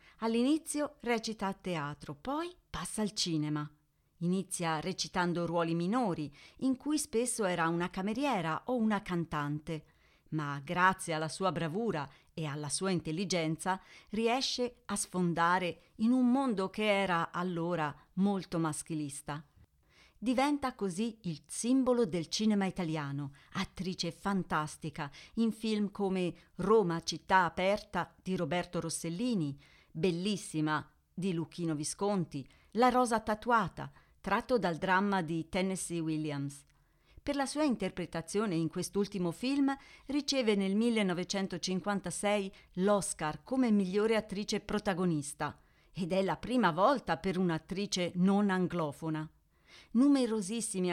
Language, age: Italian, 40-59